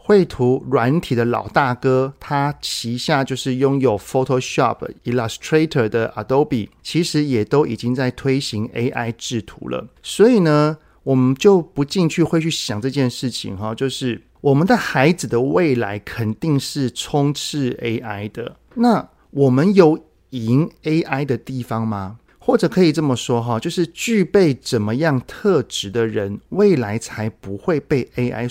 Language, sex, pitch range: Chinese, male, 110-145 Hz